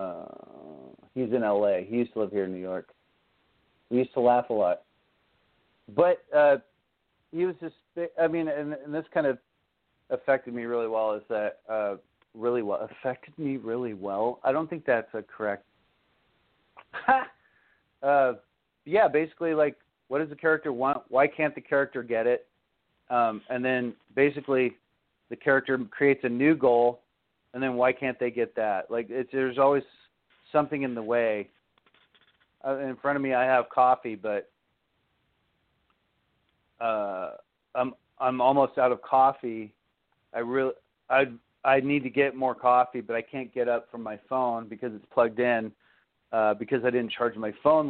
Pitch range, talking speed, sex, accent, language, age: 115-140 Hz, 165 wpm, male, American, English, 40-59